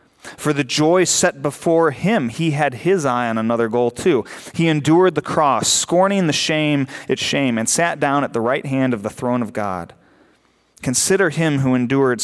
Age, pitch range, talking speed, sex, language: 30-49, 100-135 Hz, 190 wpm, male, English